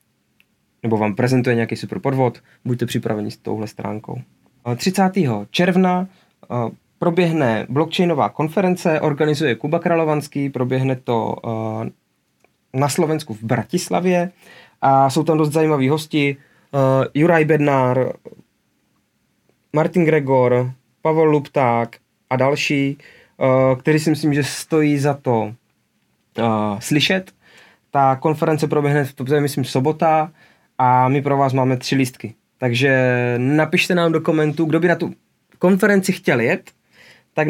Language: Czech